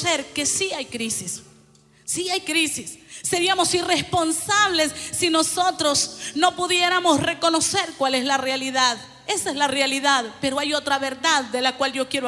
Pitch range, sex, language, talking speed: 315-380 Hz, female, Spanish, 150 wpm